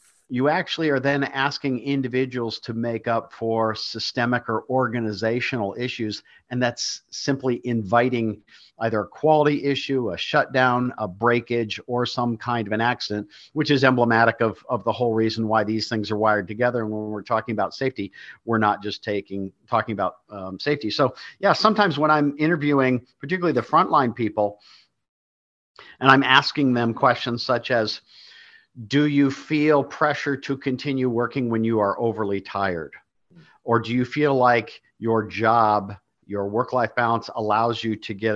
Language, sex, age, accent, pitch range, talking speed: English, male, 50-69, American, 110-135 Hz, 160 wpm